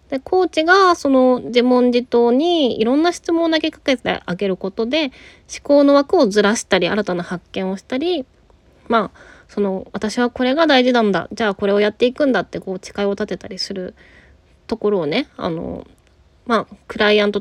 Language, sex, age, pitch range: Japanese, female, 20-39, 195-265 Hz